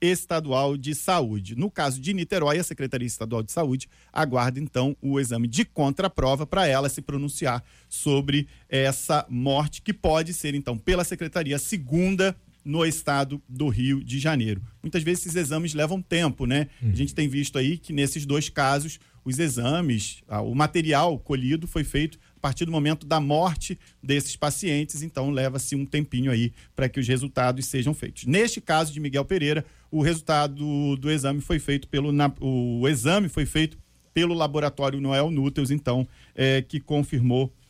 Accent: Brazilian